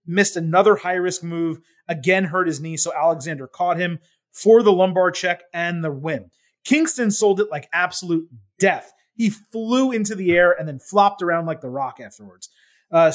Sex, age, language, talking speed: male, 30-49, English, 180 wpm